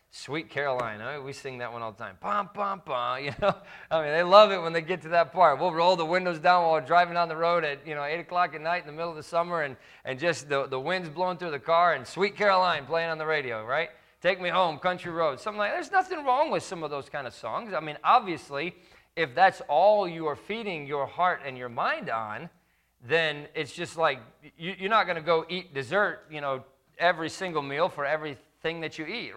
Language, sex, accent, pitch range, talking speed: English, male, American, 135-180 Hz, 250 wpm